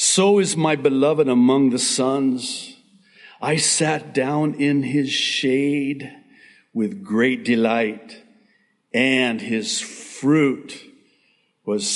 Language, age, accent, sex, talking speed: English, 60-79, American, male, 100 wpm